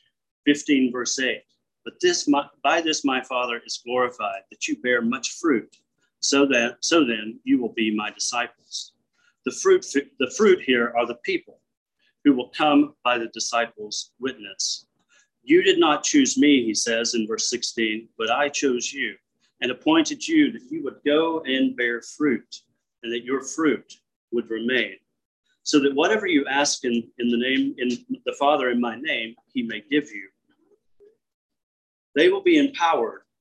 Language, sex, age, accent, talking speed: English, male, 40-59, American, 170 wpm